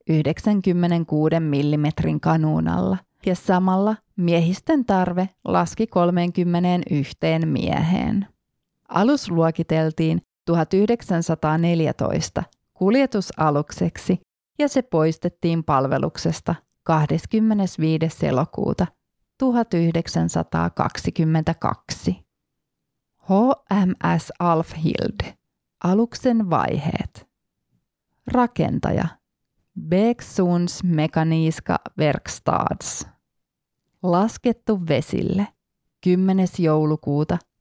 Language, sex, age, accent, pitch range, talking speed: Finnish, female, 30-49, native, 155-190 Hz, 50 wpm